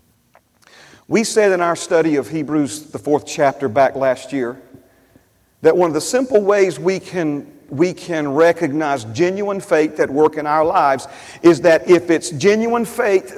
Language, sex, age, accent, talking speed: English, male, 40-59, American, 160 wpm